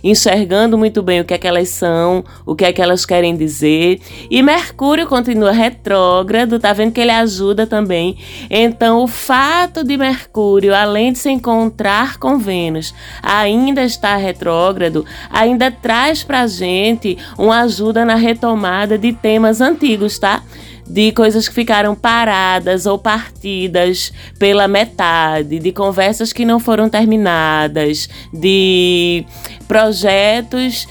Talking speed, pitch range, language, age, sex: 135 wpm, 180-225 Hz, Portuguese, 20-39, female